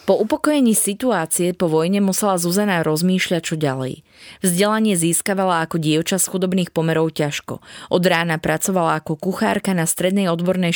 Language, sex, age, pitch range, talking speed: Slovak, female, 20-39, 155-200 Hz, 145 wpm